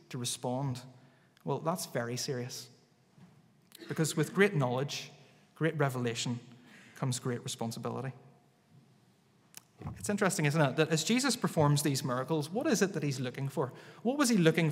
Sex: male